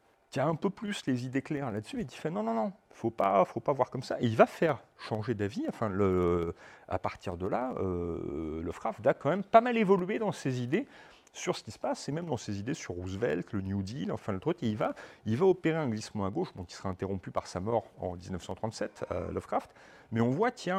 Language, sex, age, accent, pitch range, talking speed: French, male, 40-59, French, 105-155 Hz, 250 wpm